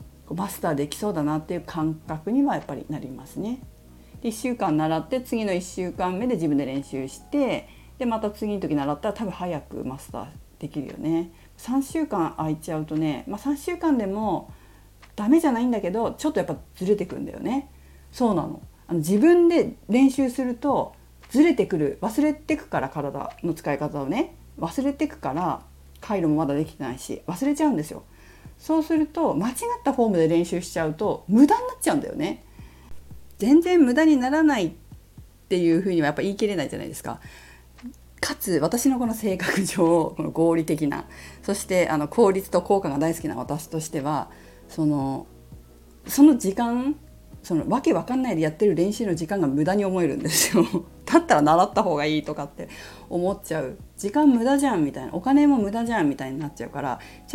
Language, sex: Japanese, female